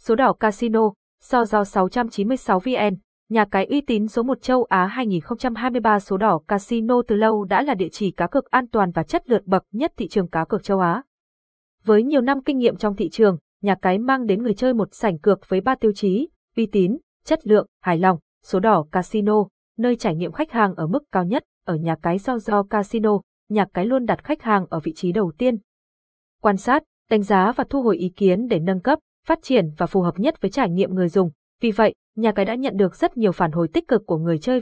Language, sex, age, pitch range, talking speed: Vietnamese, female, 20-39, 190-245 Hz, 235 wpm